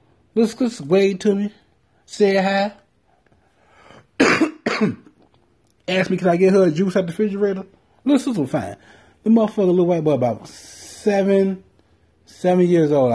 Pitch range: 110-165 Hz